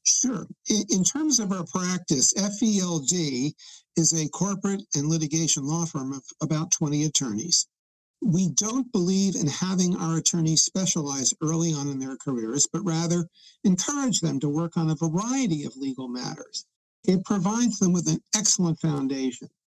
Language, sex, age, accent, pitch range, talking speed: English, male, 60-79, American, 155-200 Hz, 150 wpm